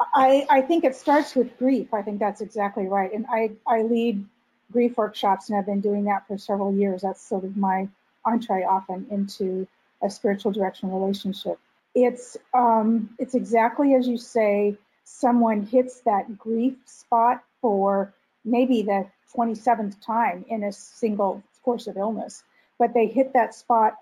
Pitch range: 205-240 Hz